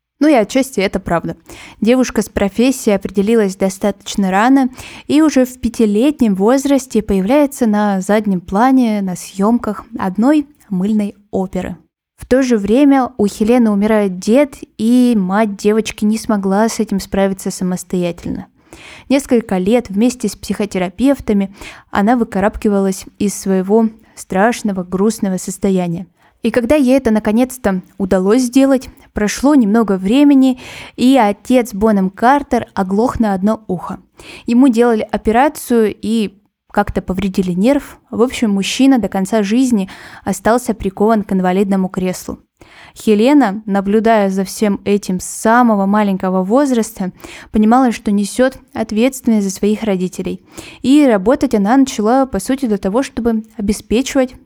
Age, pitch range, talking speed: 10-29, 195-245 Hz, 130 wpm